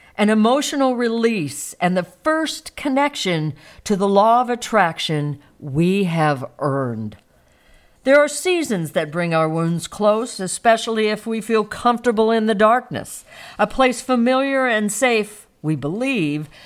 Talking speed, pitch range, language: 135 wpm, 165-240 Hz, English